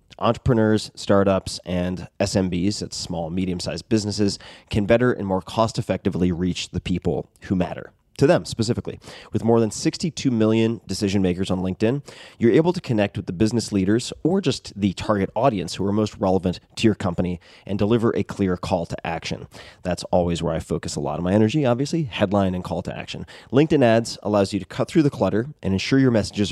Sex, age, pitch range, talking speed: male, 30-49, 95-115 Hz, 200 wpm